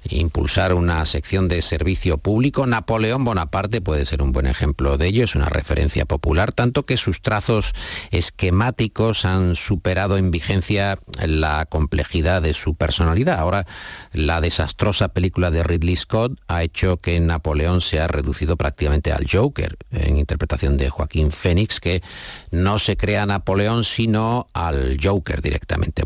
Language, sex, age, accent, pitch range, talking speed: Spanish, male, 50-69, Spanish, 80-100 Hz, 145 wpm